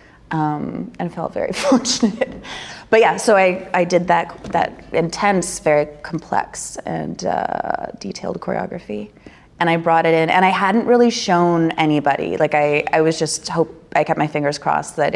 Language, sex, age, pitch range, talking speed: English, female, 30-49, 150-180 Hz, 170 wpm